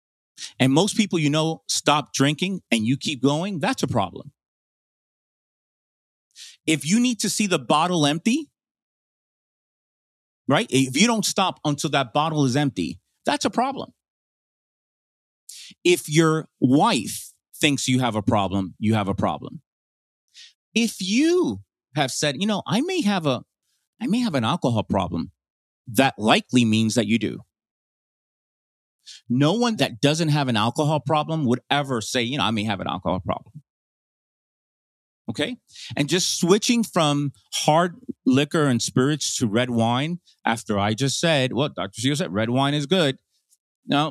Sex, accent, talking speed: male, American, 155 wpm